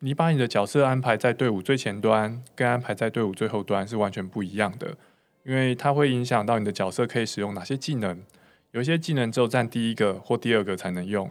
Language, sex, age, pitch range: Chinese, male, 20-39, 105-135 Hz